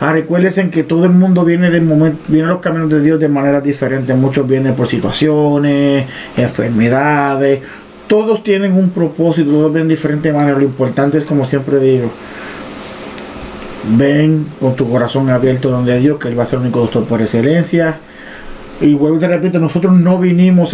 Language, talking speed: Spanish, 180 wpm